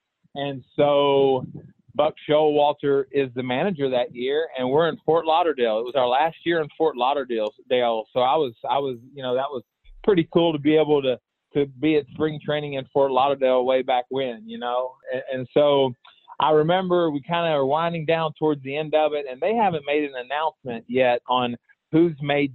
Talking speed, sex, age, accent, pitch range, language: 200 wpm, male, 30-49, American, 130-160 Hz, English